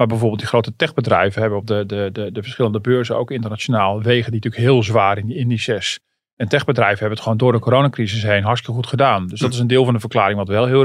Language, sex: Dutch, male